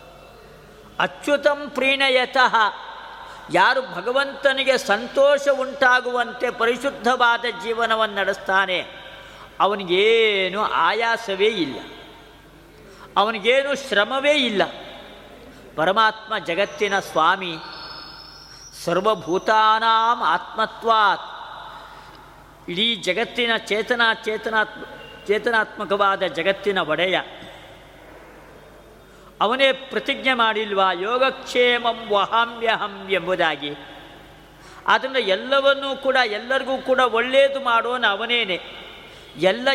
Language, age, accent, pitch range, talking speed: Kannada, 50-69, native, 200-265 Hz, 65 wpm